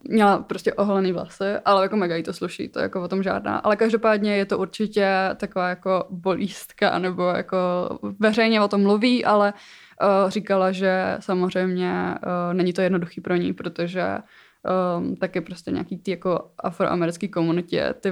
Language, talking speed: Czech, 160 wpm